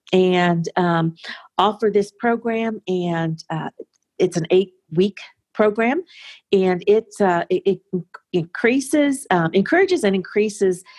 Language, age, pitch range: English, 50-69, 170-215 Hz